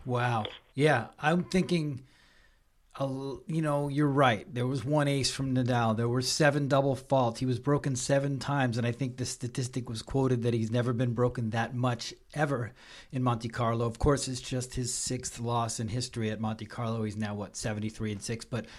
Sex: male